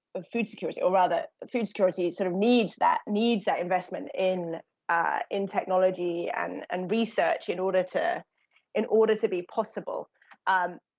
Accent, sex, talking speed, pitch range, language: British, female, 165 wpm, 180-220 Hz, English